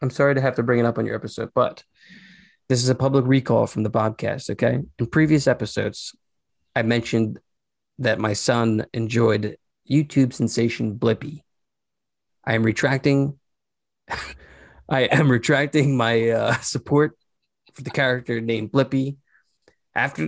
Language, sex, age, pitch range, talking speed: English, male, 20-39, 115-145 Hz, 140 wpm